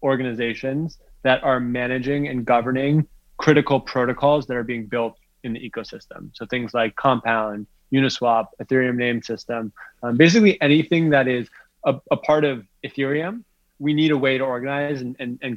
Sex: male